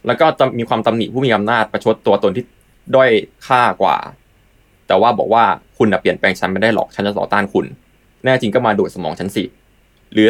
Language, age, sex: Thai, 20-39, male